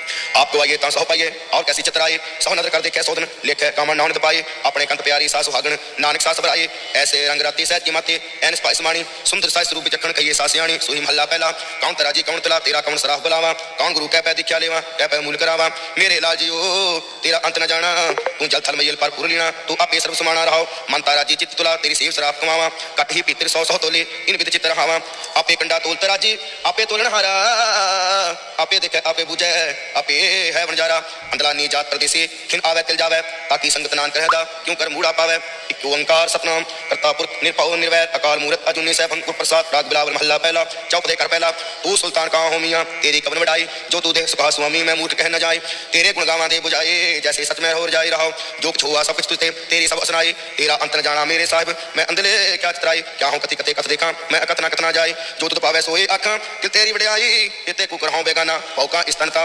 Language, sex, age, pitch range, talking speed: Punjabi, male, 30-49, 155-165 Hz, 90 wpm